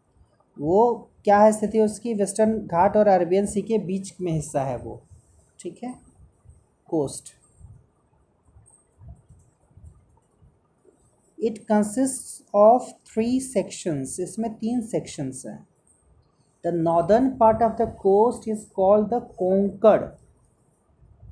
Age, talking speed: 30-49, 105 wpm